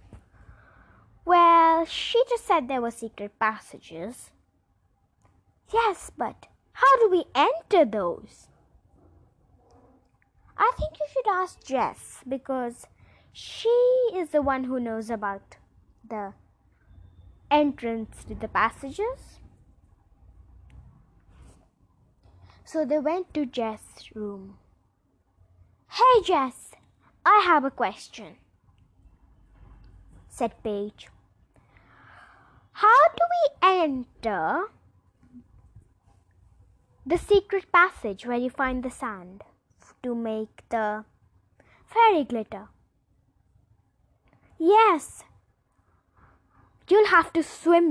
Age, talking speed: 10-29, 90 wpm